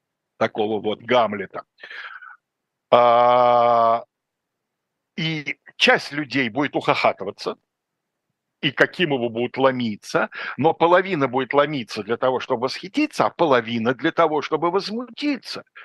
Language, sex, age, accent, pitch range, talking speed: Russian, male, 60-79, native, 115-160 Hz, 100 wpm